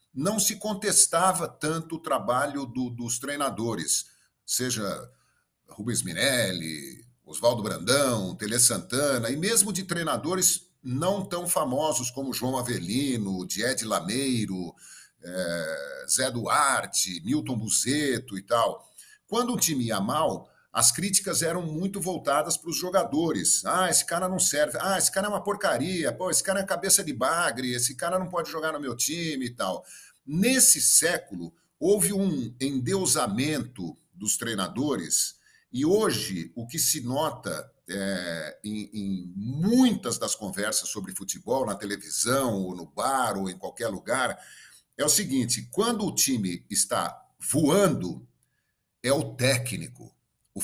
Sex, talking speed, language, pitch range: male, 140 wpm, Portuguese, 120-190 Hz